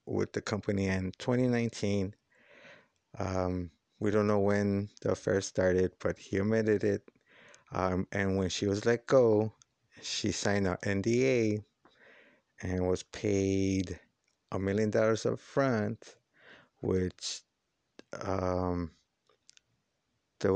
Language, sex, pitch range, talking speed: English, male, 95-110 Hz, 115 wpm